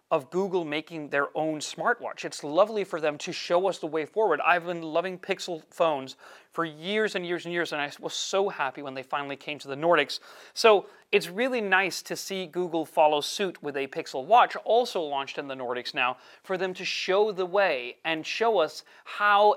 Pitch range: 155-195 Hz